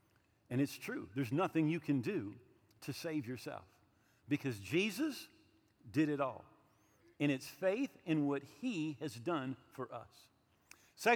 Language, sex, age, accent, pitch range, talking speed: English, male, 50-69, American, 130-220 Hz, 145 wpm